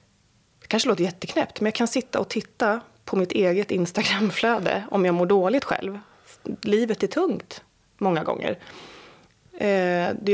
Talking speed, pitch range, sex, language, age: 140 wpm, 175-220 Hz, female, Swedish, 30-49